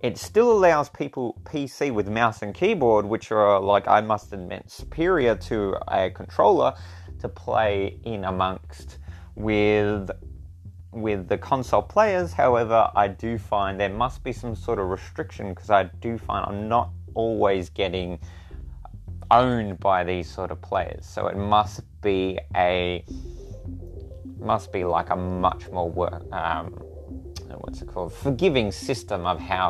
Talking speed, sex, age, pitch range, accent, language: 145 wpm, male, 20-39, 90-105 Hz, Australian, English